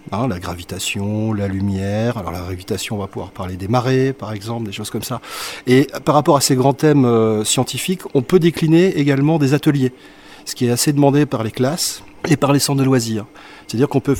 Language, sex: French, male